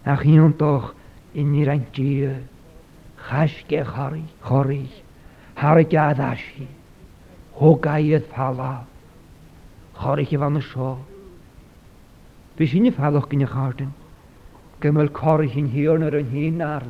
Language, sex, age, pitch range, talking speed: English, male, 50-69, 135-155 Hz, 75 wpm